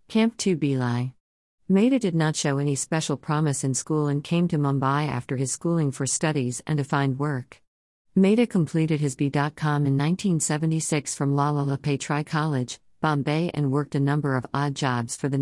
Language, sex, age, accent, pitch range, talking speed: English, female, 50-69, American, 130-155 Hz, 175 wpm